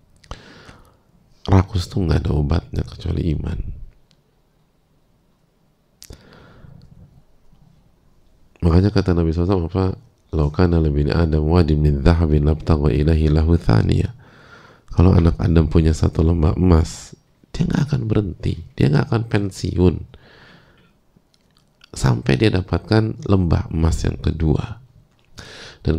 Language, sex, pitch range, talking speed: English, male, 80-110 Hz, 90 wpm